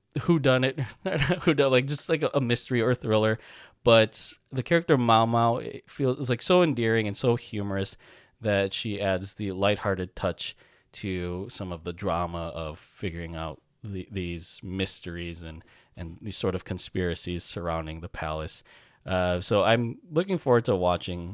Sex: male